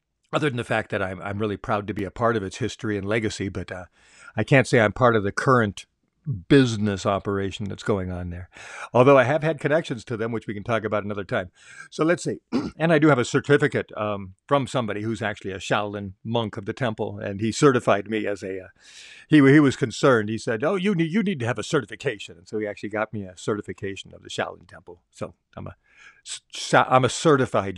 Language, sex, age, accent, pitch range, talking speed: English, male, 50-69, American, 105-145 Hz, 230 wpm